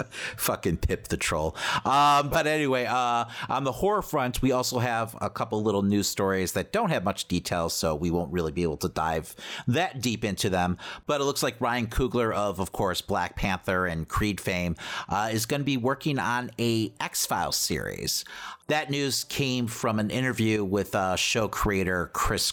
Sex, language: male, English